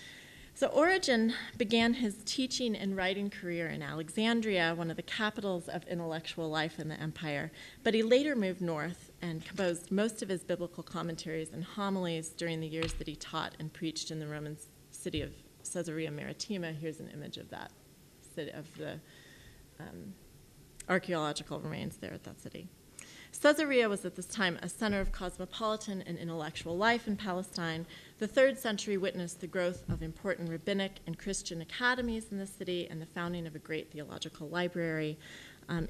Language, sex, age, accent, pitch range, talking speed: English, female, 30-49, American, 160-195 Hz, 170 wpm